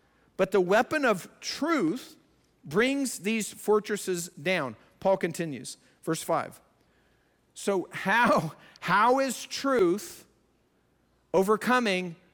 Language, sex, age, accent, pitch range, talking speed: English, male, 50-69, American, 180-245 Hz, 90 wpm